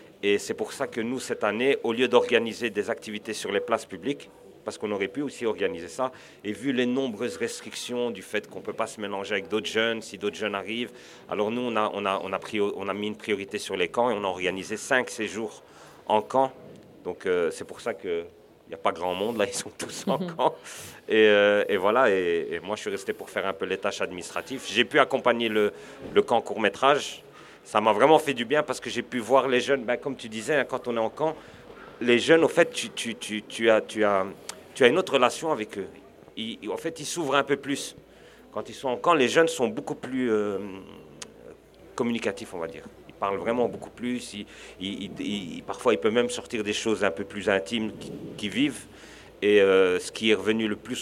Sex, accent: male, French